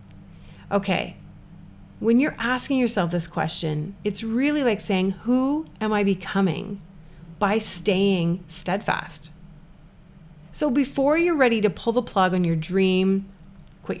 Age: 30-49